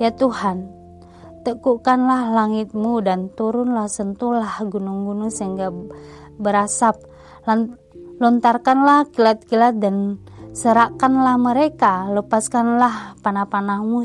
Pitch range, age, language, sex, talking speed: 190-225 Hz, 20-39, Indonesian, female, 75 wpm